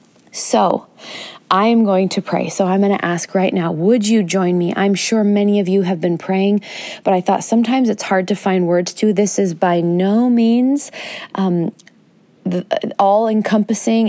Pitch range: 190-215 Hz